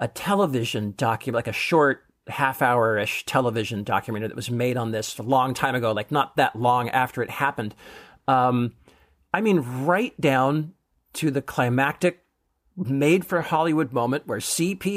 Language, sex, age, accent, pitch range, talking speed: English, male, 50-69, American, 125-175 Hz, 160 wpm